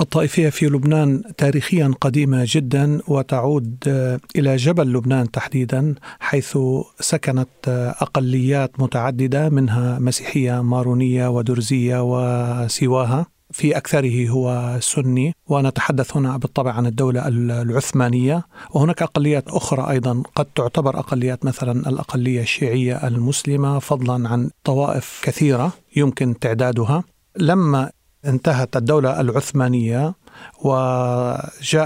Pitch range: 125-145 Hz